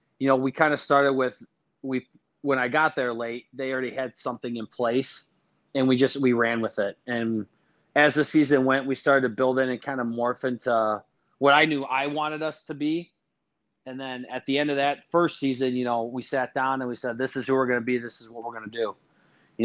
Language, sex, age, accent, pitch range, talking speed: English, male, 30-49, American, 120-140 Hz, 255 wpm